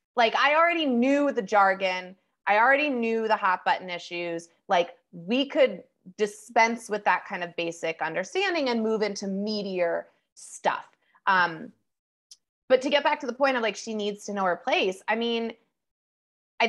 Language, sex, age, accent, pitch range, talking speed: English, female, 20-39, American, 190-255 Hz, 170 wpm